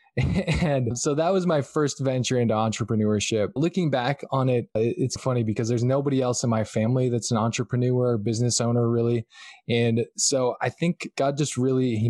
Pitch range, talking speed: 115-135 Hz, 185 wpm